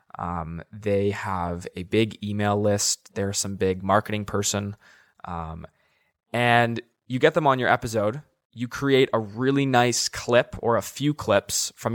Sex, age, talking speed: male, 20-39, 155 wpm